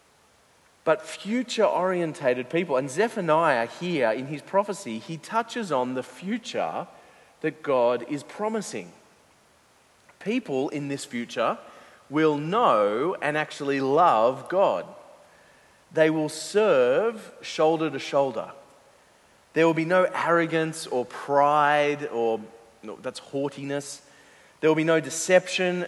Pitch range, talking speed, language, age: 130-170 Hz, 115 wpm, English, 30-49